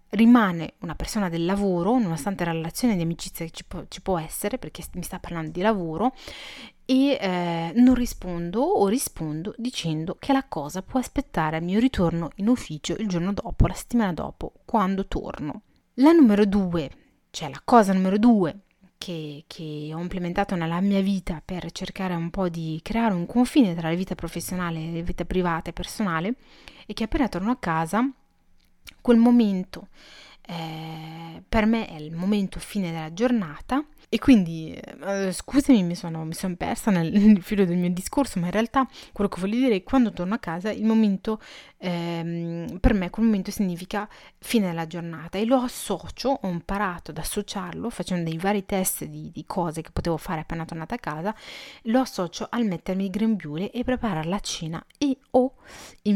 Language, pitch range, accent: Italian, 170-225 Hz, native